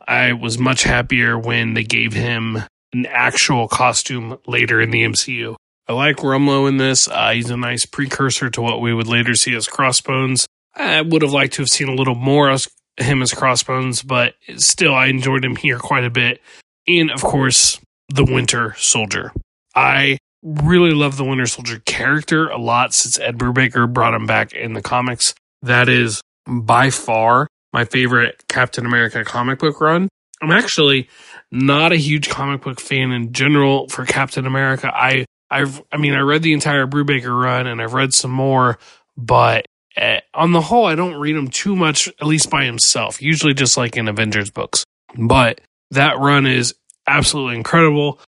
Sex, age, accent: male, 20-39, American